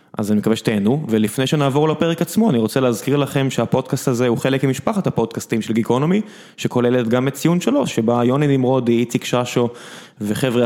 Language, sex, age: Hebrew, male, 20-39